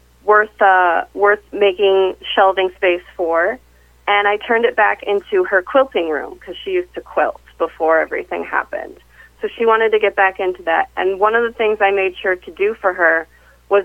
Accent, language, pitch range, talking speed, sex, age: American, English, 175-215 Hz, 195 wpm, female, 30-49